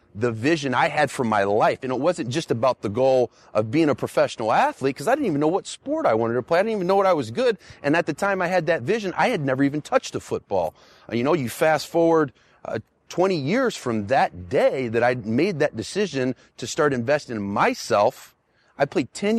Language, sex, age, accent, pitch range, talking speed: English, male, 30-49, American, 115-150 Hz, 240 wpm